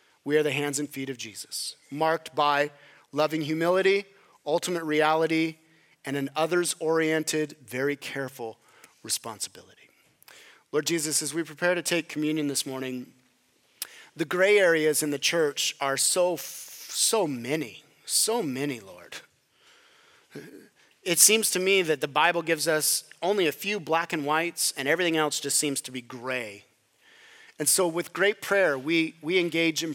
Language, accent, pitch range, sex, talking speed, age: English, American, 140-180 Hz, male, 150 wpm, 30-49